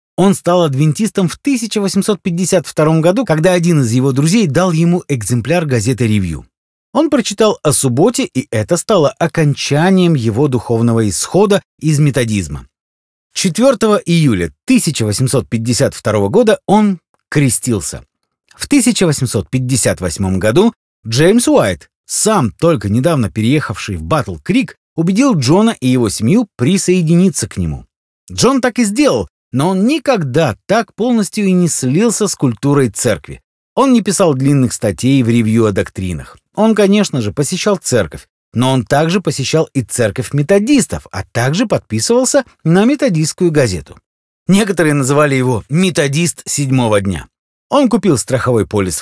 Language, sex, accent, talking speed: Russian, male, native, 130 wpm